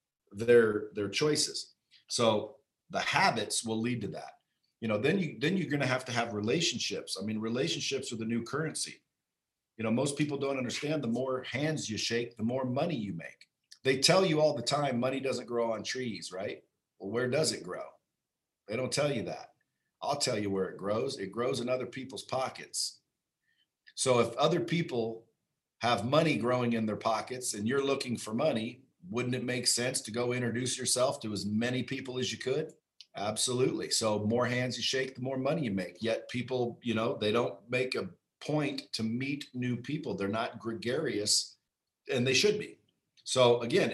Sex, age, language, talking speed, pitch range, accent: male, 40-59, English, 195 wpm, 115-130 Hz, American